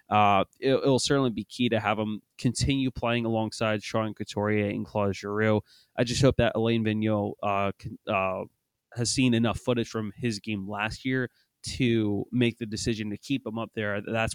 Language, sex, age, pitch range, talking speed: English, male, 20-39, 105-120 Hz, 190 wpm